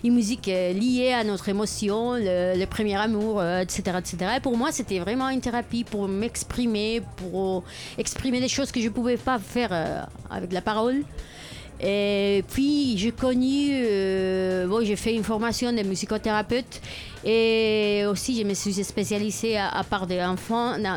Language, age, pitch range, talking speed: French, 40-59, 190-235 Hz, 165 wpm